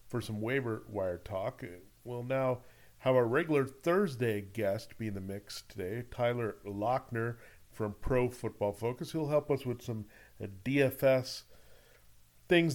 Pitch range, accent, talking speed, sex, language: 115-135 Hz, American, 140 wpm, male, English